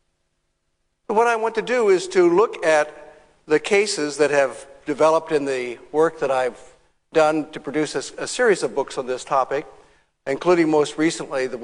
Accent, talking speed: American, 170 wpm